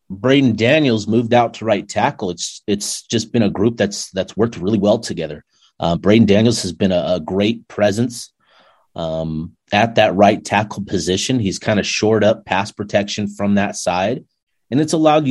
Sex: male